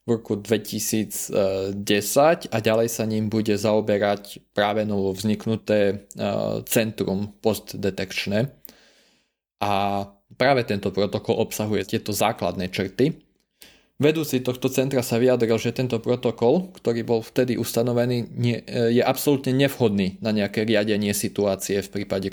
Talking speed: 120 wpm